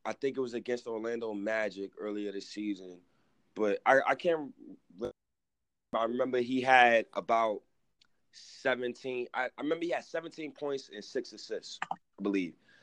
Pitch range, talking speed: 110-130 Hz, 155 wpm